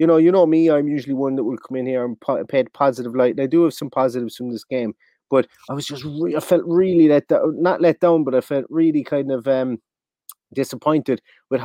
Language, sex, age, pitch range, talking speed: English, male, 30-49, 125-150 Hz, 235 wpm